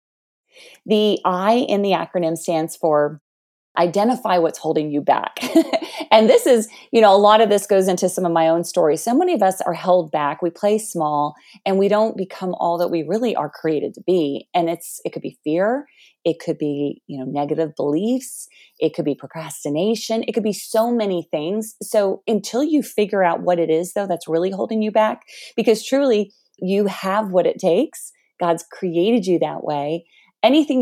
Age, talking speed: 30-49, 195 wpm